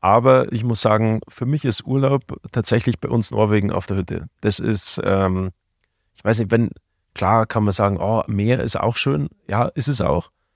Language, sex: German, male